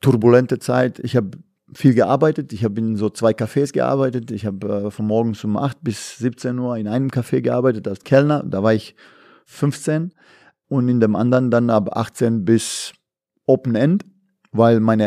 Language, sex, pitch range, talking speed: German, male, 105-125 Hz, 180 wpm